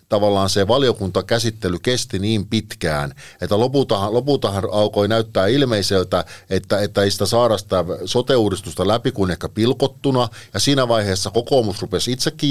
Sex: male